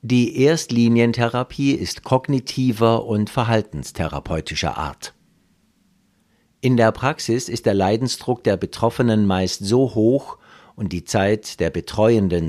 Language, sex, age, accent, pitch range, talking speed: German, male, 60-79, German, 90-120 Hz, 110 wpm